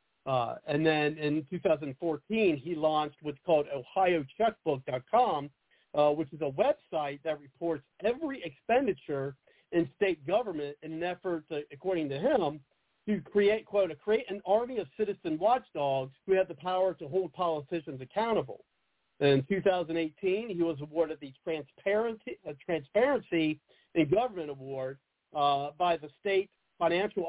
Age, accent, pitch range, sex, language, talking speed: 50-69, American, 150-185 Hz, male, English, 140 wpm